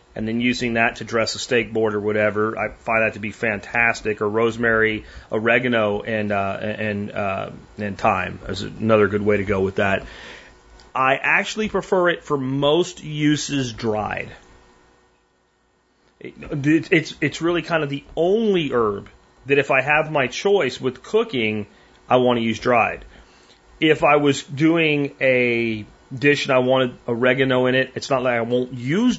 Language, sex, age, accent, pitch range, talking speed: English, male, 30-49, American, 110-135 Hz, 170 wpm